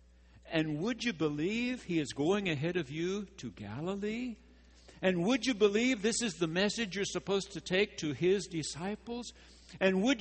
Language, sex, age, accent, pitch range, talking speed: English, male, 60-79, American, 110-150 Hz, 170 wpm